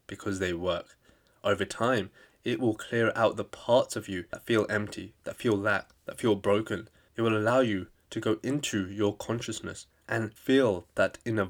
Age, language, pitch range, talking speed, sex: 20-39, English, 100-120 Hz, 185 wpm, male